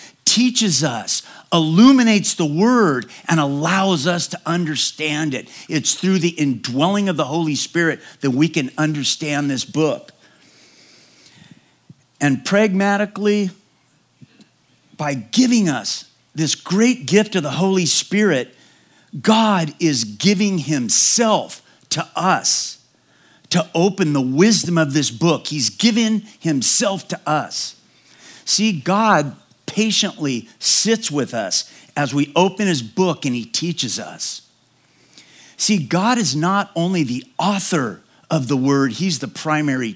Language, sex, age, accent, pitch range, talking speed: English, male, 50-69, American, 140-200 Hz, 125 wpm